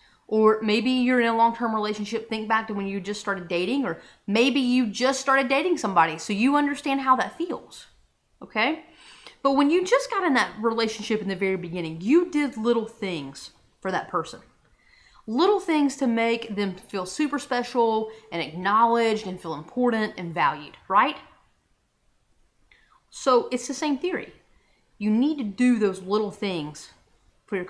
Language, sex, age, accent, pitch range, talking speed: English, female, 30-49, American, 210-275 Hz, 170 wpm